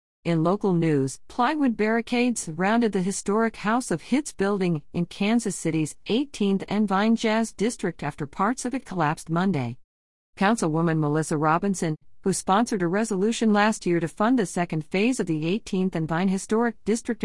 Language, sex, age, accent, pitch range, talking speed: English, female, 50-69, American, 150-205 Hz, 165 wpm